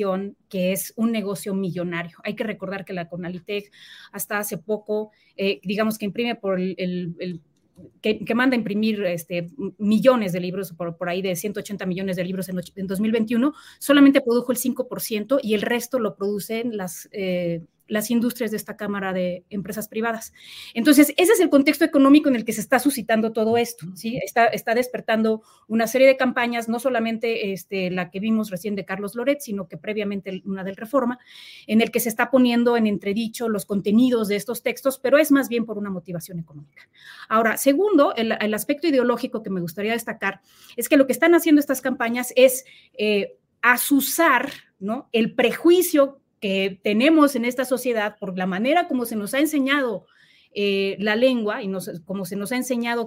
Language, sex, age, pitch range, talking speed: Spanish, female, 30-49, 195-245 Hz, 185 wpm